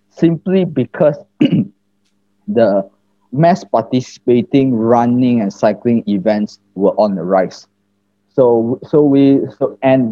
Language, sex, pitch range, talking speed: English, male, 100-125 Hz, 105 wpm